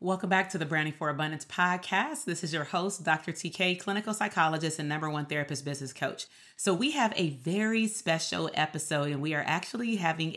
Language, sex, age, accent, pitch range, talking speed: English, female, 30-49, American, 155-195 Hz, 195 wpm